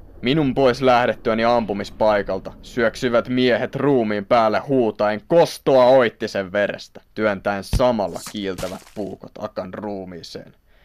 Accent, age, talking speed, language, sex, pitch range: native, 20-39, 100 wpm, Finnish, male, 100-120 Hz